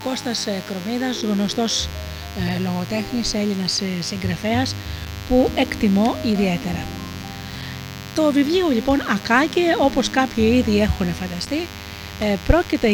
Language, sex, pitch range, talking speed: Greek, female, 185-245 Hz, 90 wpm